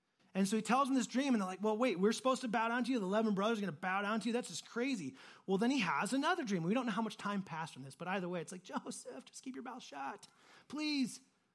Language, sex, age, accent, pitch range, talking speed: English, male, 30-49, American, 185-245 Hz, 300 wpm